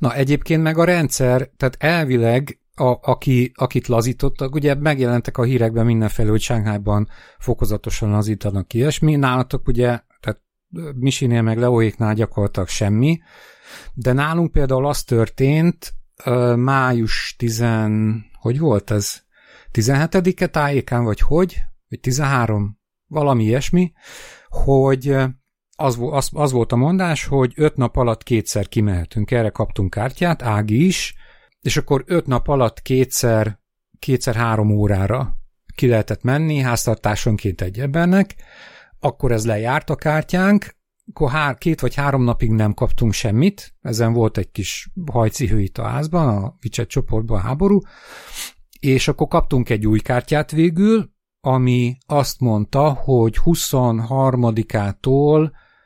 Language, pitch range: Hungarian, 115-145 Hz